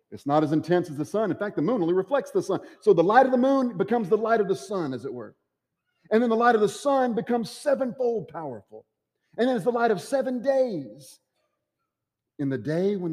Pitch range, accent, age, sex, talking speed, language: 115-185 Hz, American, 40-59, male, 240 wpm, English